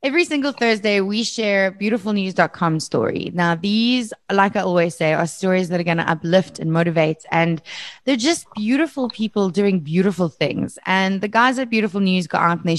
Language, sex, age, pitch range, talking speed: English, female, 20-39, 175-230 Hz, 190 wpm